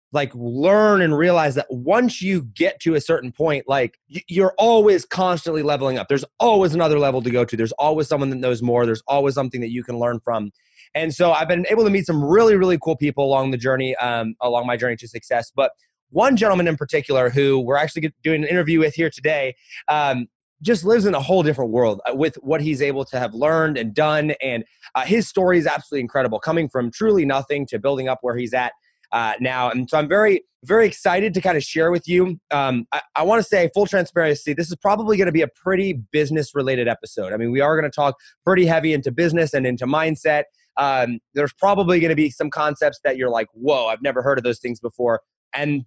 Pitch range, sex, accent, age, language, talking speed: 130-180 Hz, male, American, 20-39, English, 225 wpm